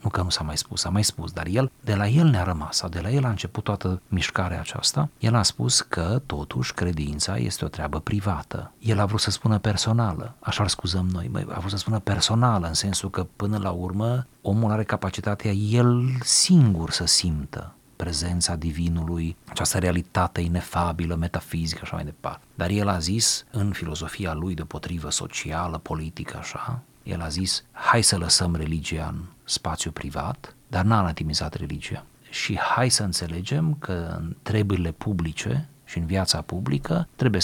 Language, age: Romanian, 40-59